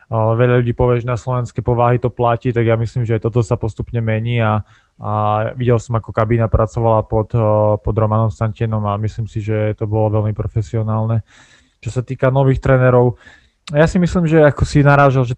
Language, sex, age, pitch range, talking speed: Slovak, male, 20-39, 110-120 Hz, 195 wpm